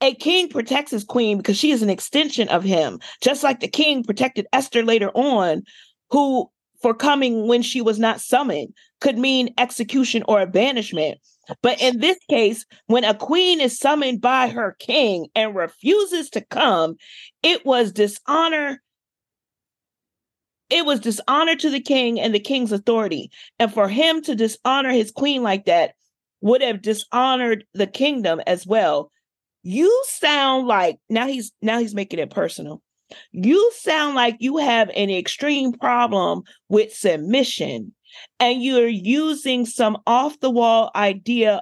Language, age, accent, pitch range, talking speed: English, 40-59, American, 210-270 Hz, 150 wpm